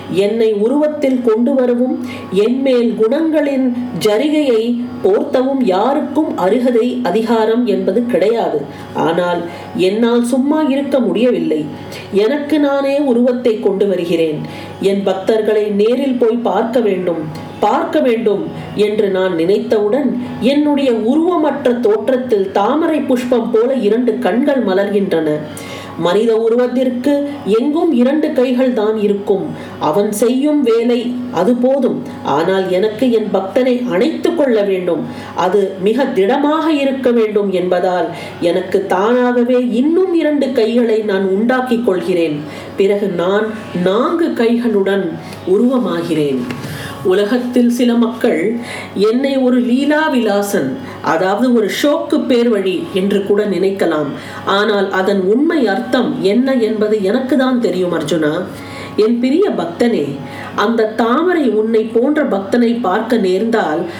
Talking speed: 100 wpm